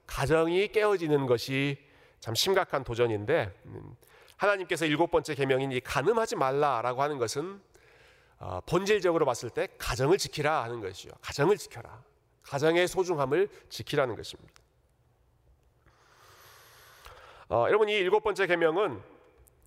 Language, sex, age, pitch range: Korean, male, 40-59, 120-175 Hz